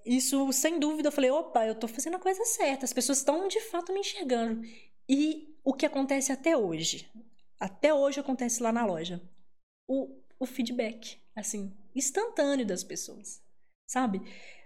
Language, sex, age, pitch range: Portuguese, female, 10-29, 225-290 Hz